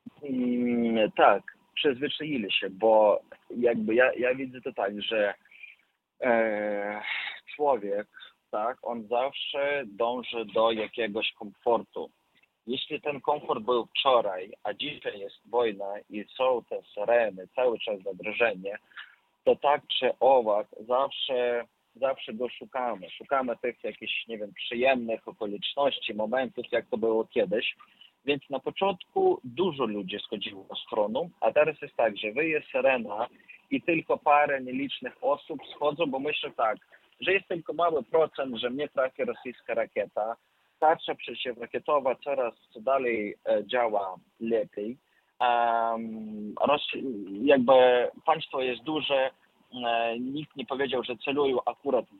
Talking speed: 120 wpm